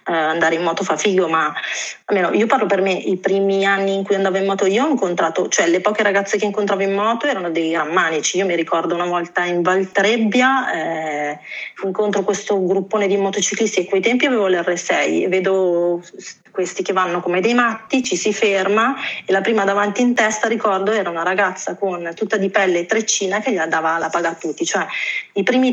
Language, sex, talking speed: Italian, female, 210 wpm